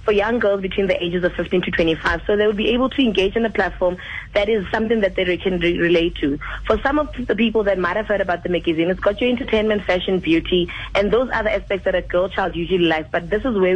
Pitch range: 175-220 Hz